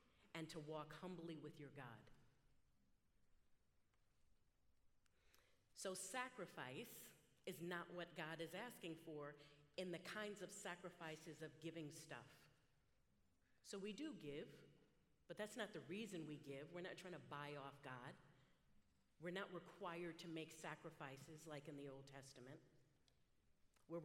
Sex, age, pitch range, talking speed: female, 50-69, 135-175 Hz, 135 wpm